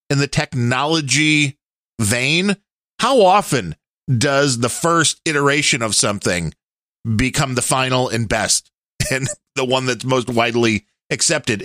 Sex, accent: male, American